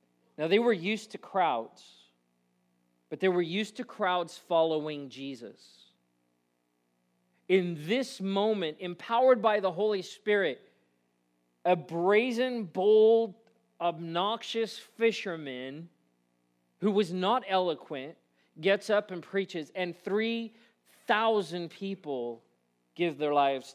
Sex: male